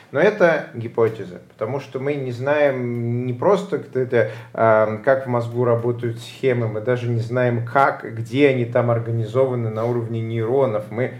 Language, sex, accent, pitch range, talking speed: Russian, male, native, 120-150 Hz, 150 wpm